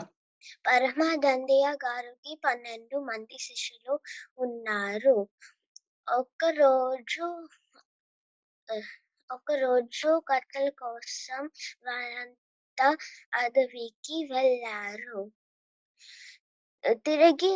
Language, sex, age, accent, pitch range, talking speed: Telugu, female, 20-39, native, 235-285 Hz, 55 wpm